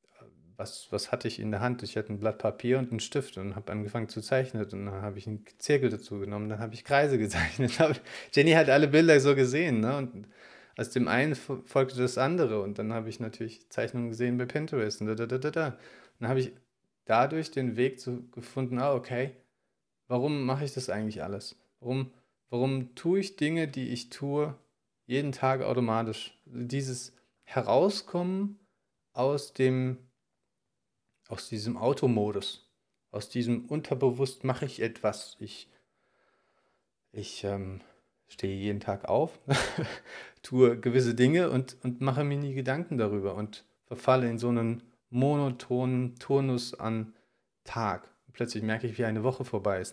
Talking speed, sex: 165 wpm, male